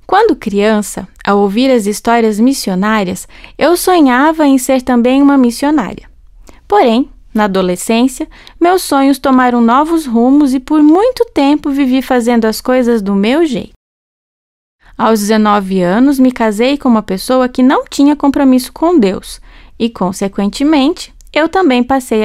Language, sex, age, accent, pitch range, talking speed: Portuguese, female, 20-39, Brazilian, 220-285 Hz, 140 wpm